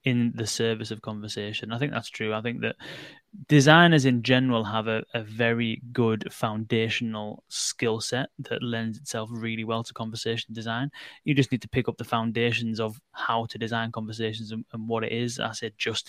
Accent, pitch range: British, 115-135 Hz